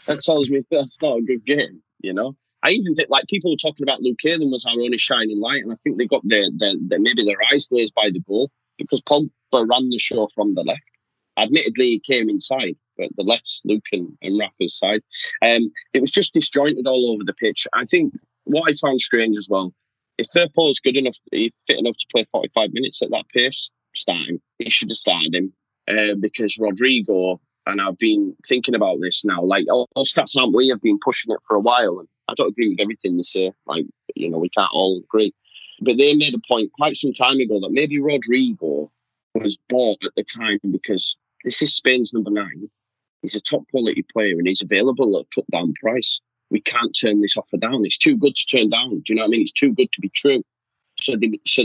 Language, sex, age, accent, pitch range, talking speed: English, male, 20-39, British, 115-160 Hz, 230 wpm